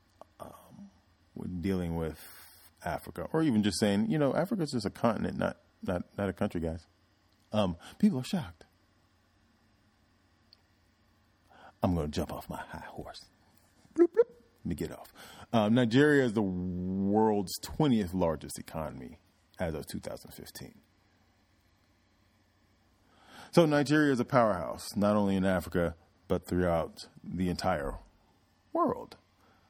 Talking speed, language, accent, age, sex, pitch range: 125 wpm, English, American, 30-49, male, 85-105 Hz